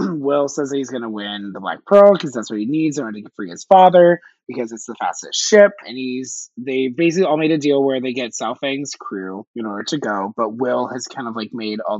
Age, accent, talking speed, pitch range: 20-39, American, 255 wpm, 105-130 Hz